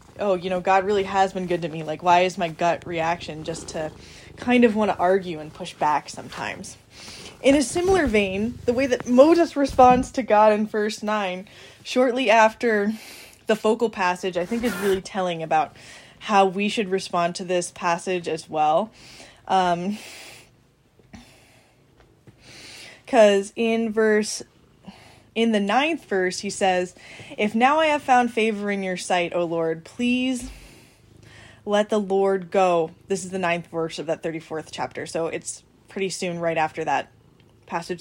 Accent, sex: American, female